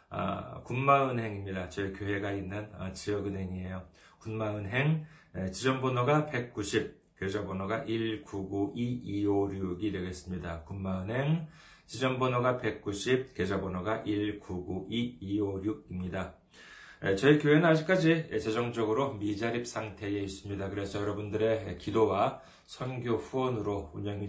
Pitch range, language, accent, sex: 100-120 Hz, Korean, native, male